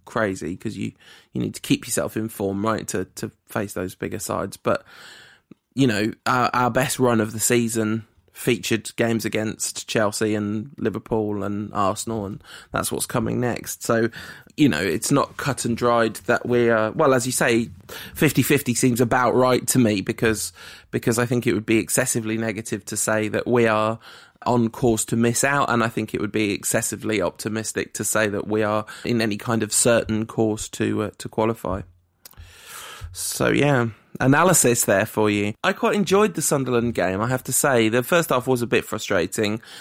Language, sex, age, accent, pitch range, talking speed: English, male, 20-39, British, 110-130 Hz, 190 wpm